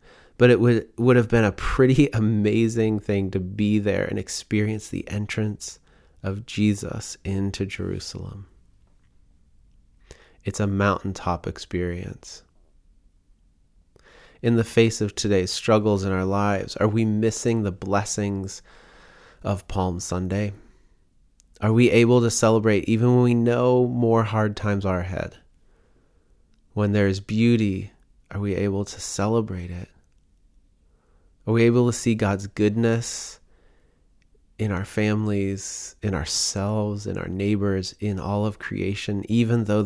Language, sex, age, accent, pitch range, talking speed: English, male, 30-49, American, 90-105 Hz, 130 wpm